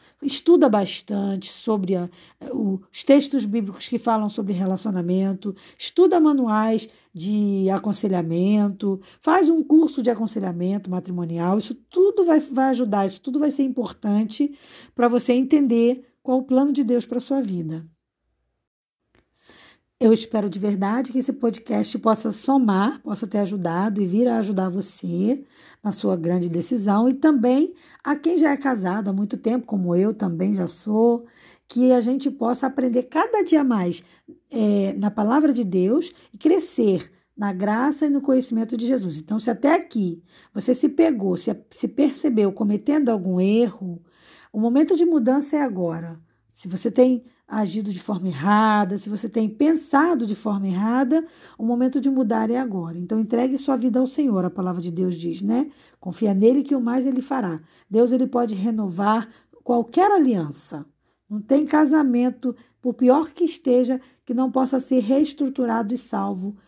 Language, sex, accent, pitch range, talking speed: Portuguese, female, Brazilian, 200-265 Hz, 160 wpm